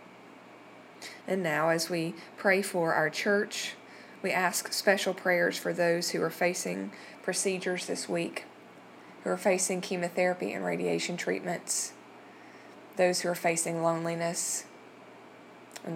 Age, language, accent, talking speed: 20-39, English, American, 125 wpm